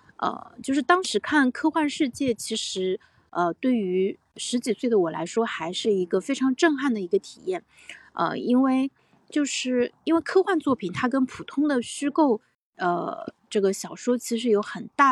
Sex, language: female, Chinese